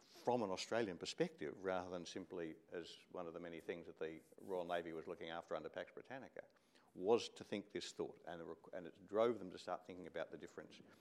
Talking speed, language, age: 225 wpm, English, 50-69